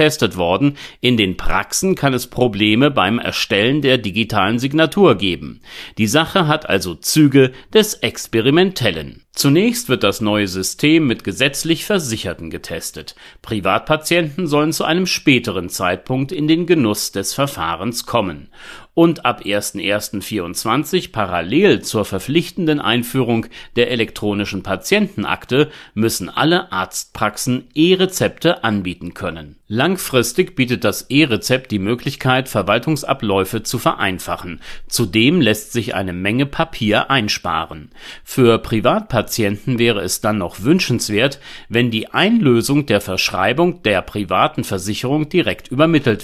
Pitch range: 105-150 Hz